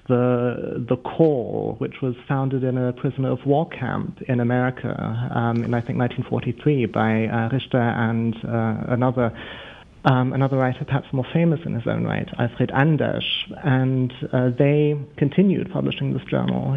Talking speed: 155 wpm